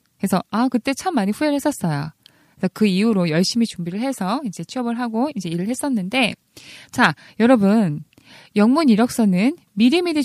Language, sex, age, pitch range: Korean, female, 20-39, 190-270 Hz